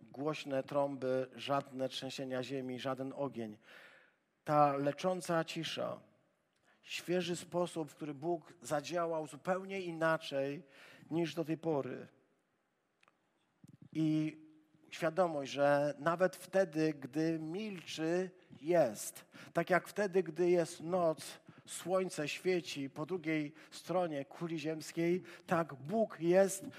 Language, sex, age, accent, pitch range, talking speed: Polish, male, 50-69, native, 150-185 Hz, 105 wpm